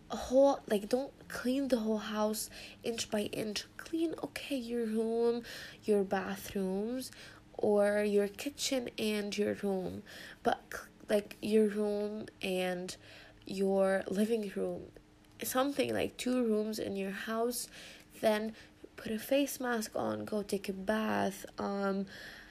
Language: English